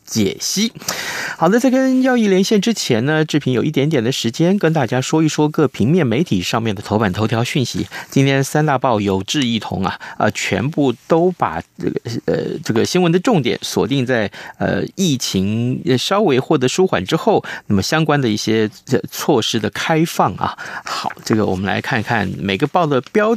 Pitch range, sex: 110-160 Hz, male